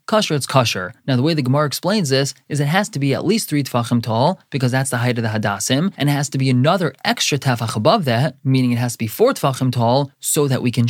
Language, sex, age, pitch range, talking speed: English, male, 20-39, 120-155 Hz, 270 wpm